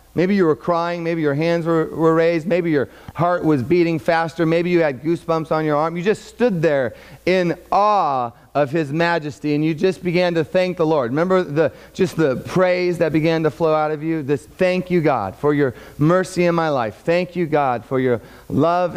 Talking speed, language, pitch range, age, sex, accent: 215 wpm, English, 130-175 Hz, 40-59, male, American